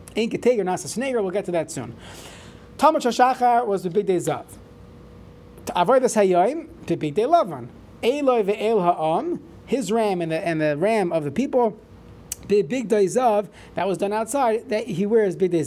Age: 30-49